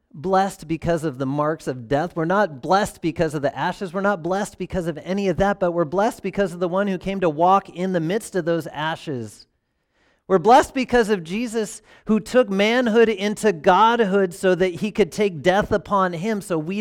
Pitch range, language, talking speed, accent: 130-215 Hz, English, 210 wpm, American